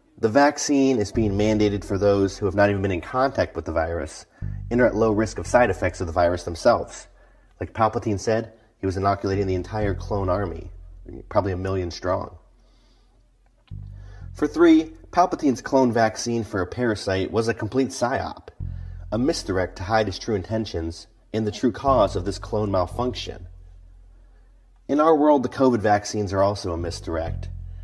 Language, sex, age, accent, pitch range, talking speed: English, male, 30-49, American, 90-110 Hz, 170 wpm